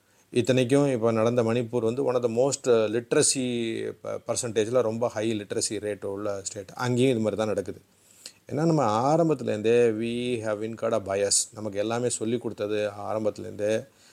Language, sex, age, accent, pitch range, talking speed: Tamil, male, 30-49, native, 105-130 Hz, 150 wpm